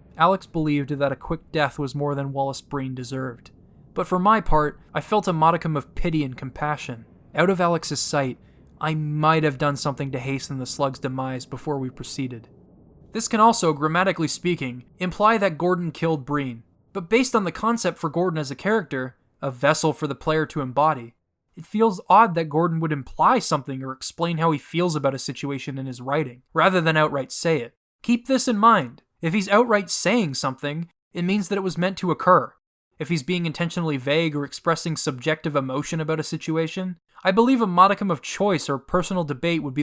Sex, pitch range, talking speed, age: male, 140-180 Hz, 200 wpm, 20-39